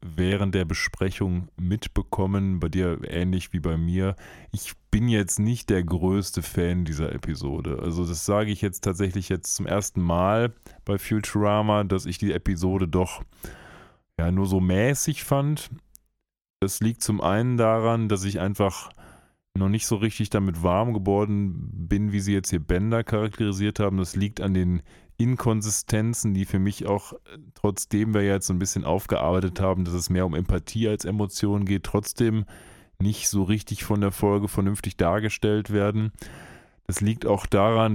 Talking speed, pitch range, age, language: 165 wpm, 95-110 Hz, 30-49, German